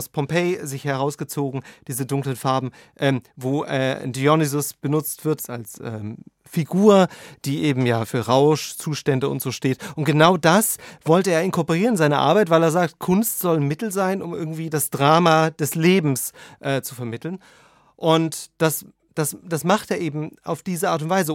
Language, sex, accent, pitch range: German, male, German, 135-170 Hz